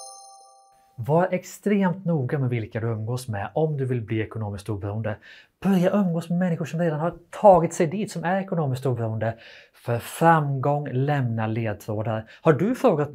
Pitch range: 115-165 Hz